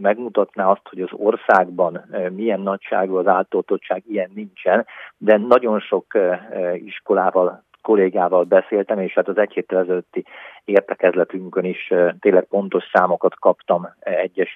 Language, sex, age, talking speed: Hungarian, male, 50-69, 125 wpm